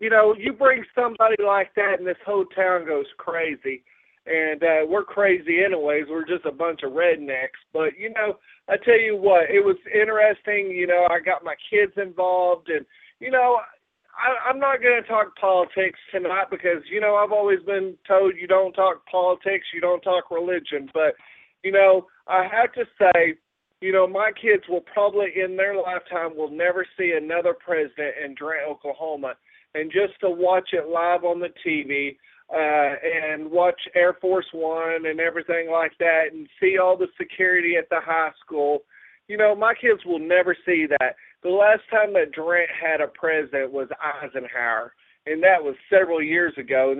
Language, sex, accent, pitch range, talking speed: English, male, American, 165-205 Hz, 185 wpm